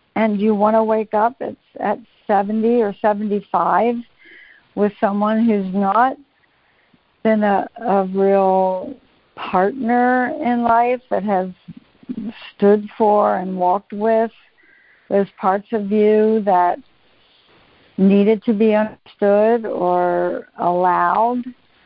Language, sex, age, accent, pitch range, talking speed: English, female, 60-79, American, 205-250 Hz, 110 wpm